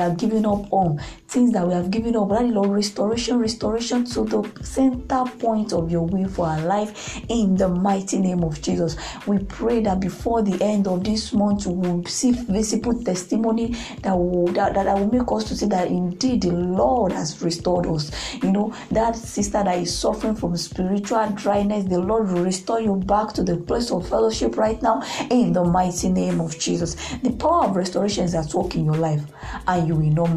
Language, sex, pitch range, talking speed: English, female, 170-225 Hz, 205 wpm